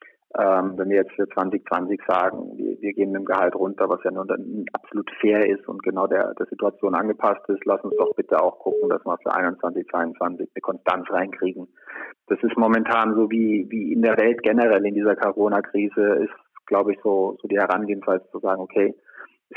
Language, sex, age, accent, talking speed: German, male, 30-49, German, 195 wpm